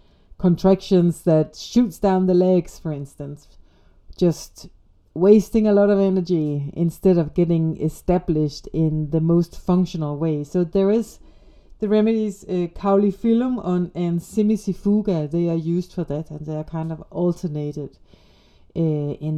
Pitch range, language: 150-190 Hz, English